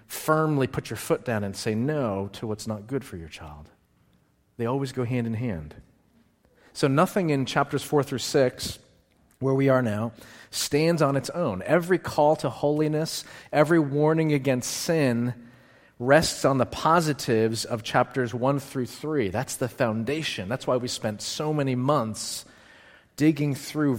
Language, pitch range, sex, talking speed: English, 110-140 Hz, male, 165 wpm